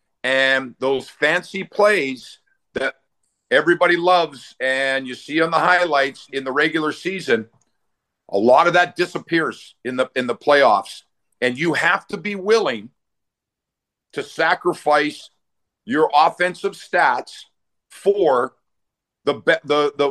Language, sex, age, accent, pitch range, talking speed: English, male, 50-69, American, 135-175 Hz, 130 wpm